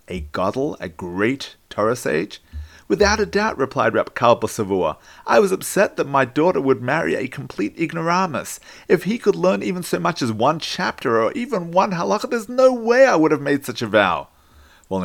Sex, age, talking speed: male, 40-59, 190 wpm